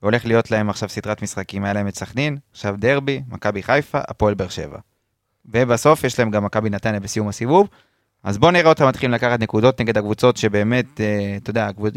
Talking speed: 185 wpm